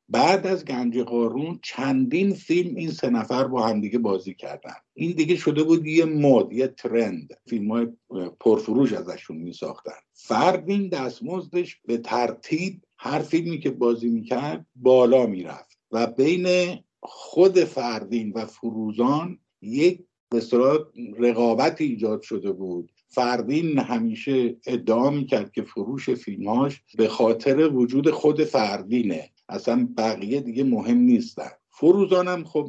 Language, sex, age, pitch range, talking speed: Persian, male, 50-69, 115-170 Hz, 125 wpm